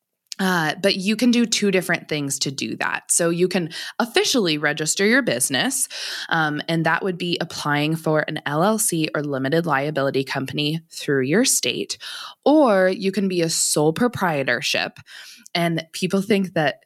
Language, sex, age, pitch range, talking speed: English, female, 20-39, 145-190 Hz, 160 wpm